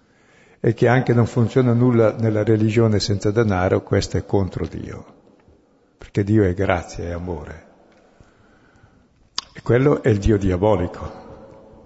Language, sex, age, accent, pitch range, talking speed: Italian, male, 60-79, native, 95-115 Hz, 130 wpm